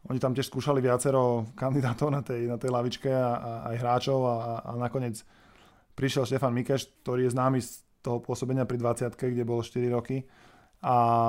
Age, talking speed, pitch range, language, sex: 20-39, 175 wpm, 125-140 Hz, Slovak, male